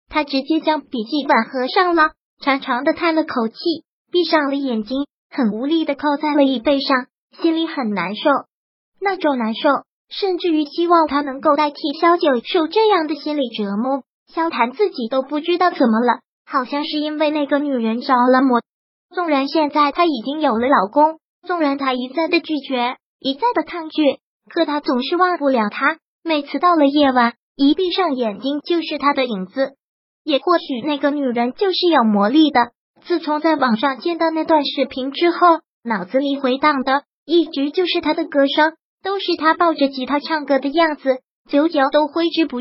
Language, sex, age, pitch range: Chinese, male, 20-39, 265-320 Hz